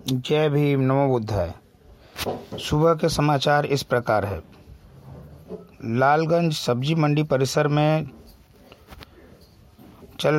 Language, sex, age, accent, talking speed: Hindi, male, 50-69, native, 90 wpm